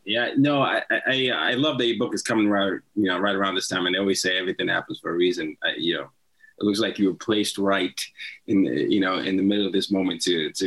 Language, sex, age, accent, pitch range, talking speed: English, male, 20-39, American, 100-135 Hz, 275 wpm